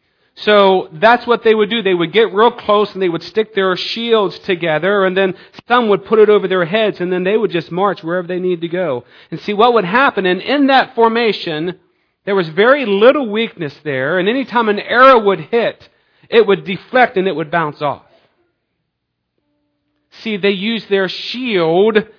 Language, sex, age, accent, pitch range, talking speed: English, male, 40-59, American, 175-220 Hz, 195 wpm